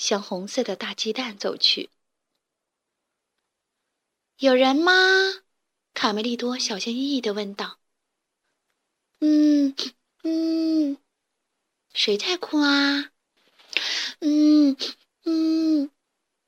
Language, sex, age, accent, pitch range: Chinese, female, 20-39, native, 230-305 Hz